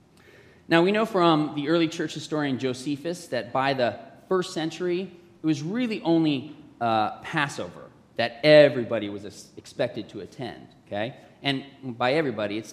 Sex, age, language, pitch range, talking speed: male, 30-49, English, 110-150 Hz, 145 wpm